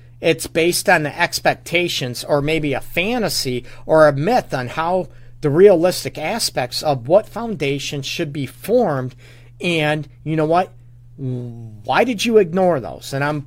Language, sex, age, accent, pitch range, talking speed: English, male, 40-59, American, 130-170 Hz, 150 wpm